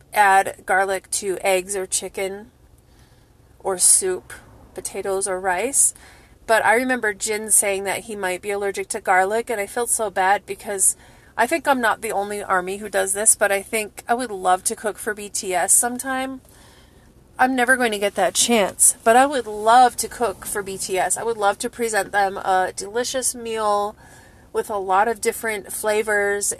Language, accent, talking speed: English, American, 180 wpm